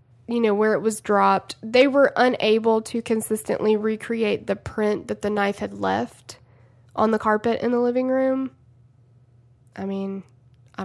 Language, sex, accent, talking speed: English, female, American, 160 wpm